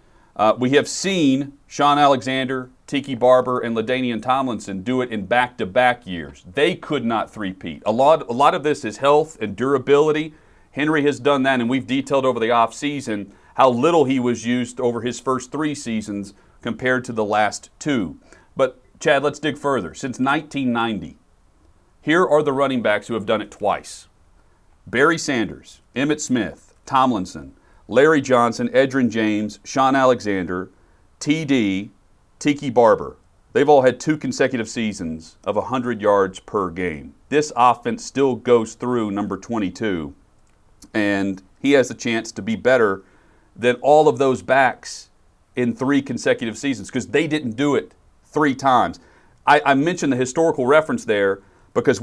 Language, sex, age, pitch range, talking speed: English, male, 40-59, 100-140 Hz, 155 wpm